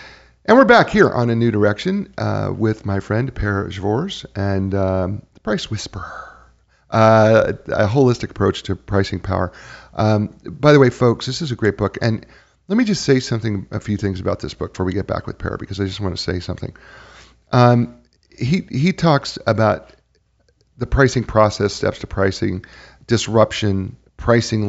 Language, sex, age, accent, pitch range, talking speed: English, male, 40-59, American, 95-115 Hz, 175 wpm